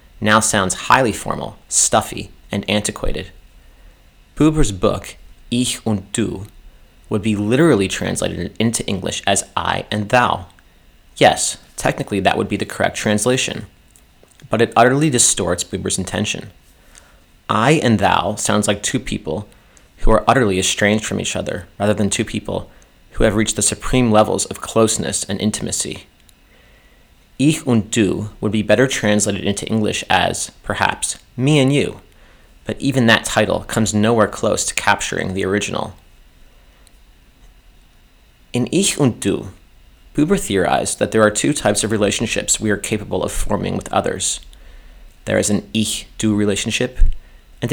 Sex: male